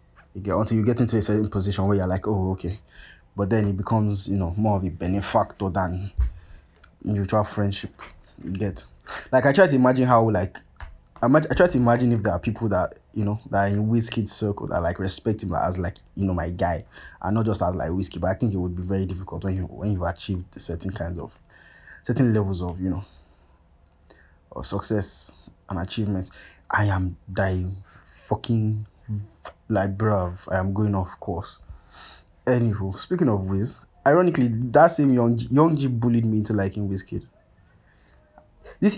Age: 20-39